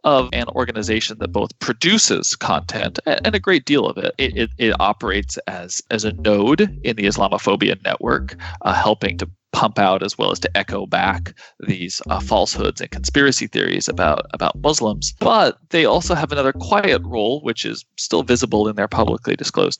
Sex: male